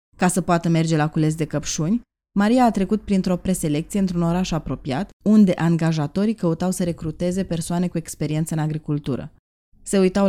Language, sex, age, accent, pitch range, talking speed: Romanian, female, 20-39, native, 150-185 Hz, 165 wpm